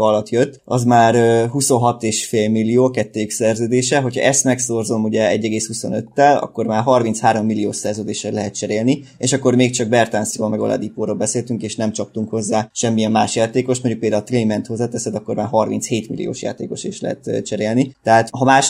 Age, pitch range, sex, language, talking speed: 20-39, 110-125 Hz, male, Hungarian, 165 wpm